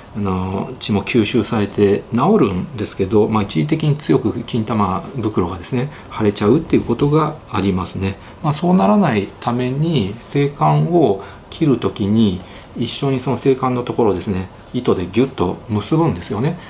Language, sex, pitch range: Japanese, male, 100-140 Hz